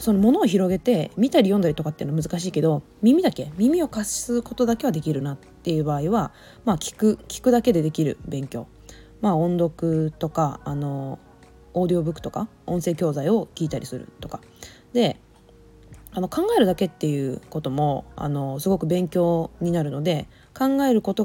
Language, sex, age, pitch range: Japanese, female, 20-39, 145-195 Hz